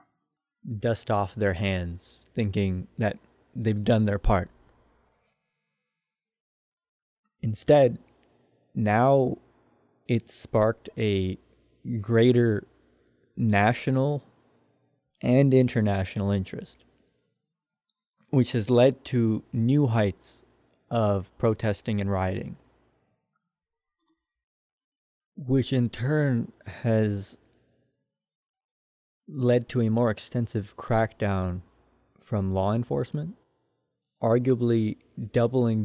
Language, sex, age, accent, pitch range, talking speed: English, male, 20-39, American, 100-130 Hz, 75 wpm